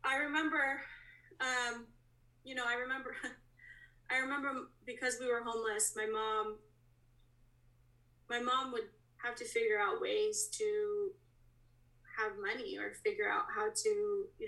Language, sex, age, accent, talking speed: English, female, 20-39, American, 135 wpm